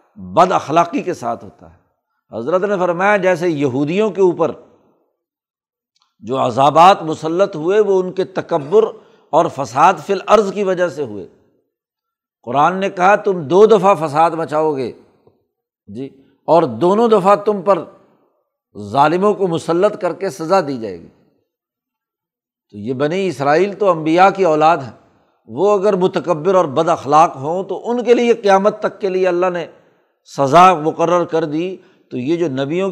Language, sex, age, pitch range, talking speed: Urdu, male, 60-79, 155-195 Hz, 160 wpm